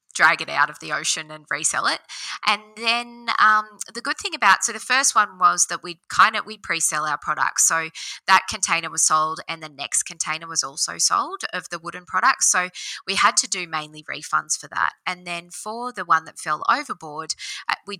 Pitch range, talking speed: 160-210 Hz, 210 wpm